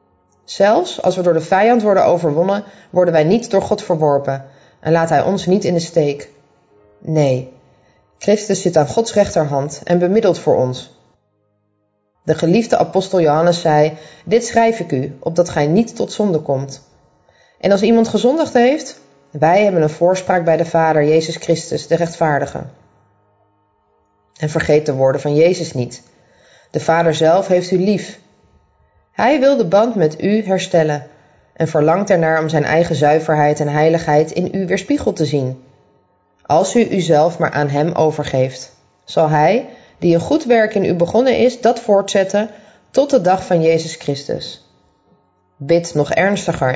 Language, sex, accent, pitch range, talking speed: Dutch, female, Dutch, 145-195 Hz, 160 wpm